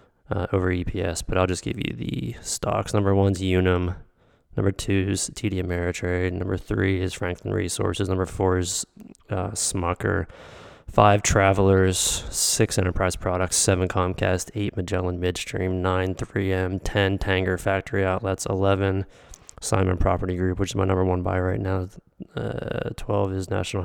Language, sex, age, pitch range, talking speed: English, male, 20-39, 90-105 Hz, 150 wpm